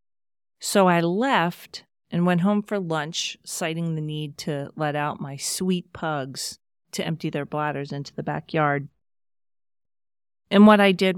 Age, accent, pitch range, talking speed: 40-59, American, 145-175 Hz, 150 wpm